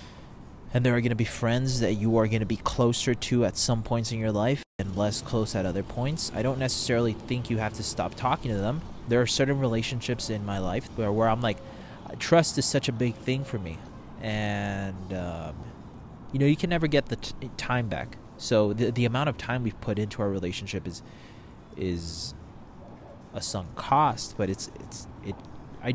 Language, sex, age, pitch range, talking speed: English, male, 20-39, 105-130 Hz, 210 wpm